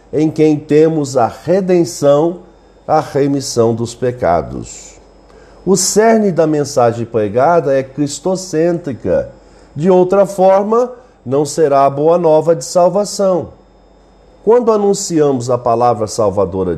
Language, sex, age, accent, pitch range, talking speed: Portuguese, male, 50-69, Brazilian, 125-170 Hz, 110 wpm